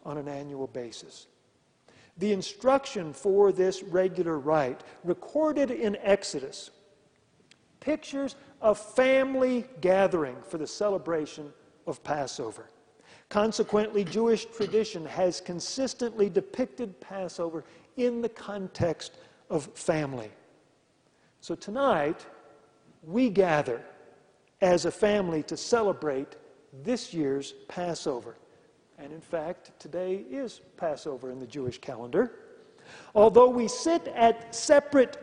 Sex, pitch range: male, 170-240 Hz